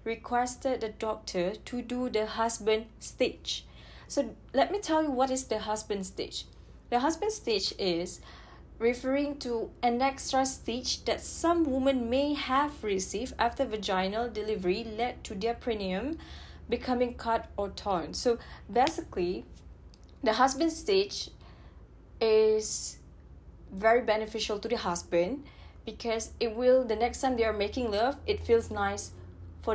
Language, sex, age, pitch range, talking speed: Malay, female, 20-39, 190-255 Hz, 140 wpm